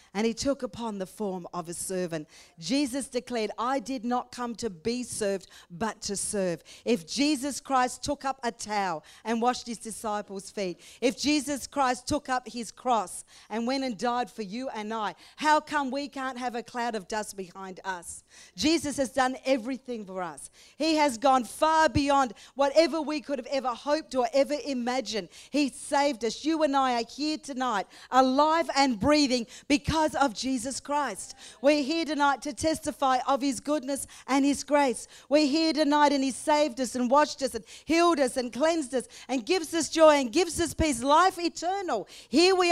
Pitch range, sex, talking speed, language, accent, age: 230-295 Hz, female, 190 wpm, English, Australian, 40-59